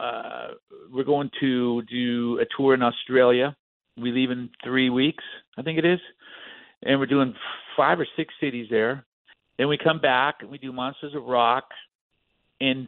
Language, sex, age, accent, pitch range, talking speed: English, male, 50-69, American, 125-150 Hz, 170 wpm